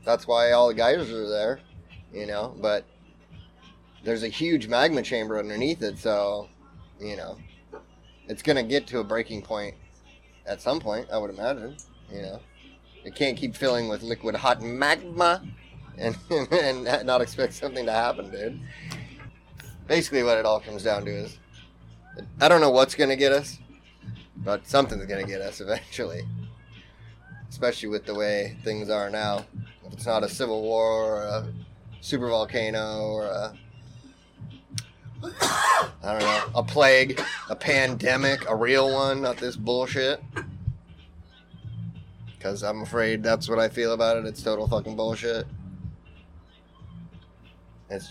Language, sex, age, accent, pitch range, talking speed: English, male, 30-49, American, 100-120 Hz, 150 wpm